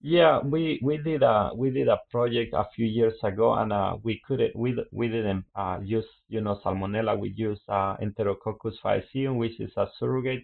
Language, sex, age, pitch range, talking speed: English, male, 30-49, 100-120 Hz, 195 wpm